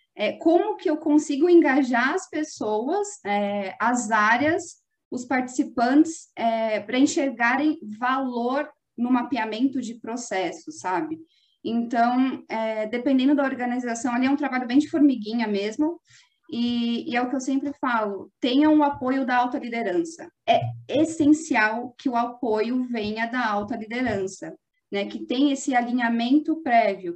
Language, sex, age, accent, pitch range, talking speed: Portuguese, female, 20-39, Brazilian, 220-280 Hz, 135 wpm